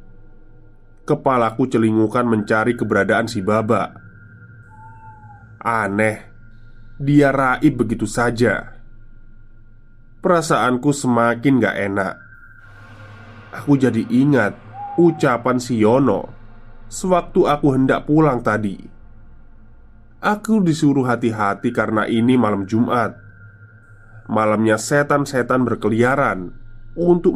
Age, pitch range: 20-39, 110-130 Hz